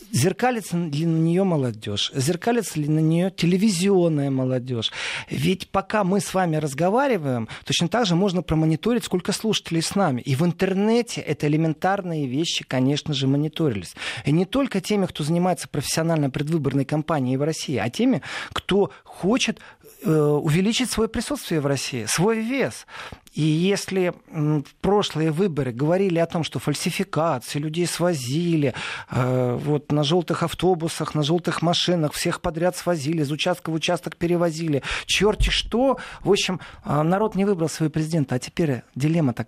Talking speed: 145 wpm